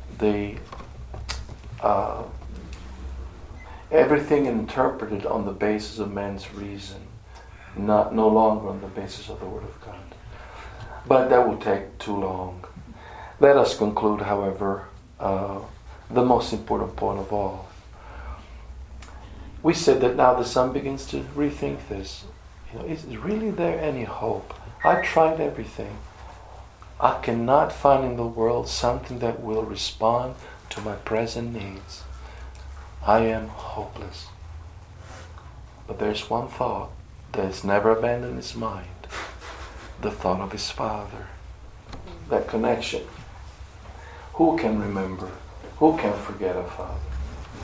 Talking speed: 125 wpm